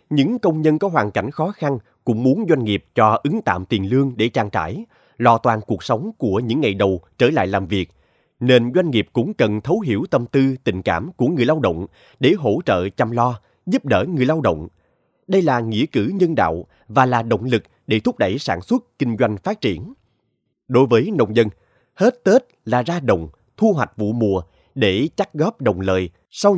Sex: male